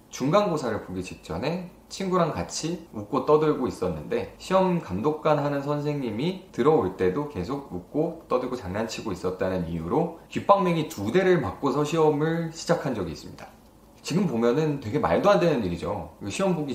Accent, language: native, Korean